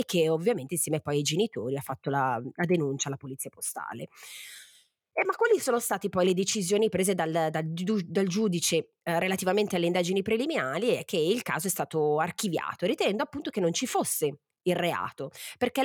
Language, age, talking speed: Italian, 30-49, 180 wpm